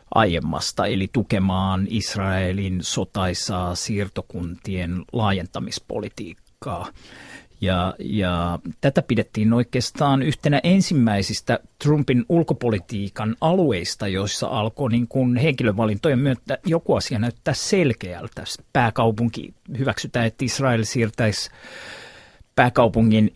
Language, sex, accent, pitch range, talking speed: Finnish, male, native, 105-140 Hz, 85 wpm